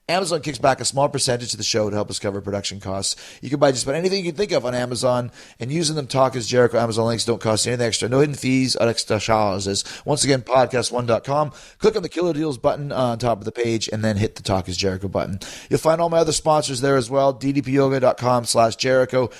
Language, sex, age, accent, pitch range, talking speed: English, male, 30-49, American, 115-145 Hz, 245 wpm